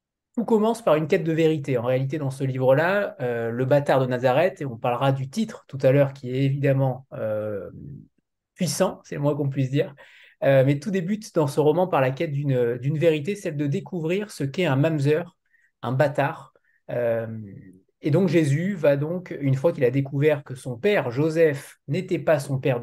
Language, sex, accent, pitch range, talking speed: French, male, French, 135-180 Hz, 195 wpm